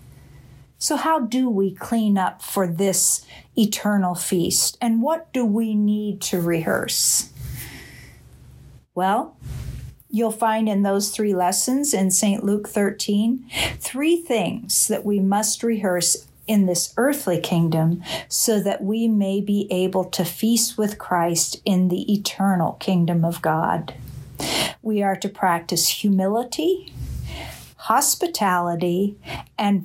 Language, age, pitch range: English, 50-69, 180-225 Hz